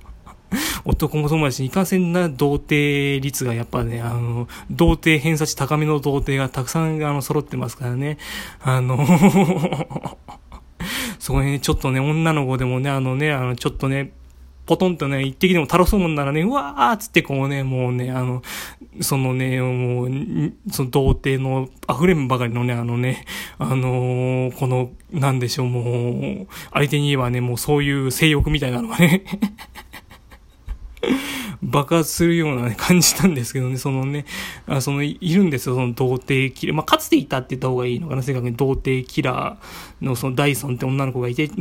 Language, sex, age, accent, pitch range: Japanese, male, 20-39, native, 125-155 Hz